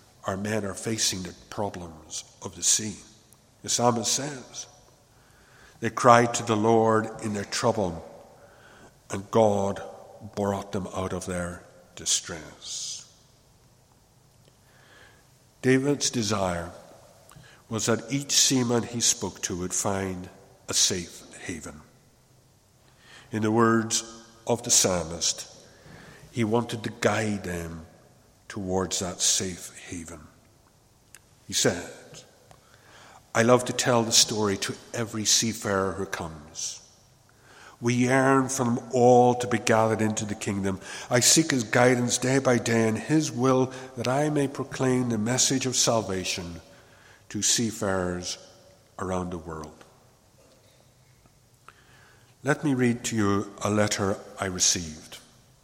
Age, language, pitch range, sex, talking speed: 60-79, English, 100-125 Hz, male, 120 wpm